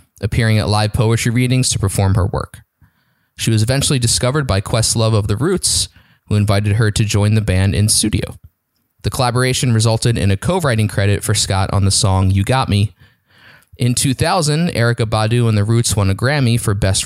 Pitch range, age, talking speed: 100-125 Hz, 20-39, 190 wpm